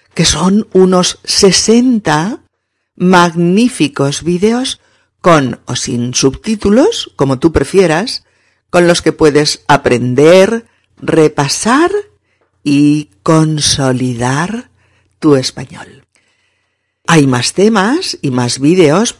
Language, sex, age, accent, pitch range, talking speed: Spanish, female, 50-69, Spanish, 135-190 Hz, 90 wpm